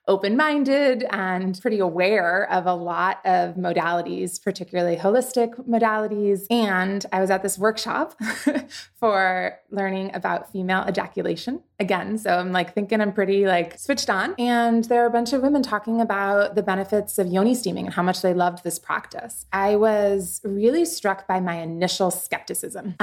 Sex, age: female, 20-39